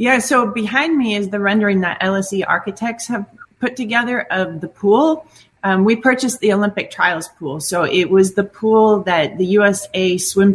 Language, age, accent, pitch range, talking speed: English, 30-49, American, 160-195 Hz, 180 wpm